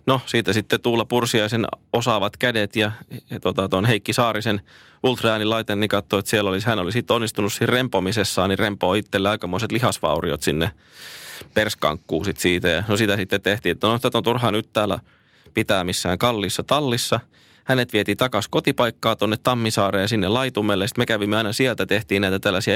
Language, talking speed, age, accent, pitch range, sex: Finnish, 170 wpm, 20-39, native, 100-120 Hz, male